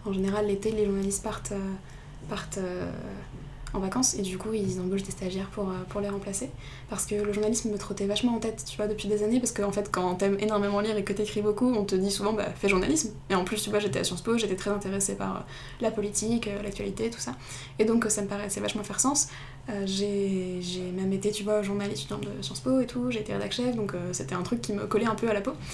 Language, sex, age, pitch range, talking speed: French, female, 20-39, 200-230 Hz, 255 wpm